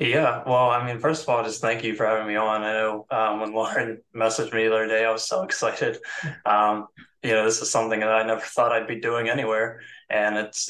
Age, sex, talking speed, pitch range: 20-39, male, 245 wpm, 110-120 Hz